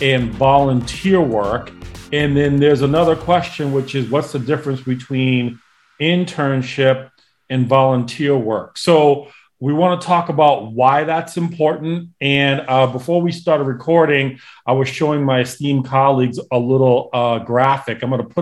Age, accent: 40-59, American